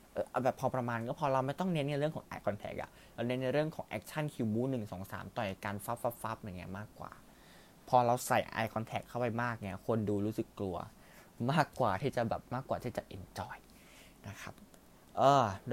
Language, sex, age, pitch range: Thai, male, 20-39, 100-130 Hz